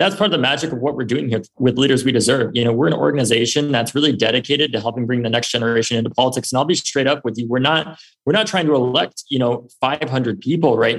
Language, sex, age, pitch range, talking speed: English, male, 20-39, 115-140 Hz, 270 wpm